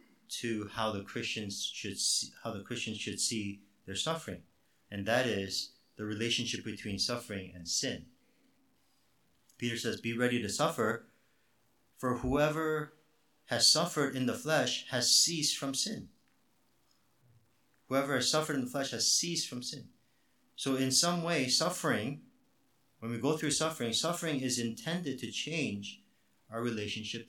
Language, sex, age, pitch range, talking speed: English, male, 50-69, 100-135 Hz, 145 wpm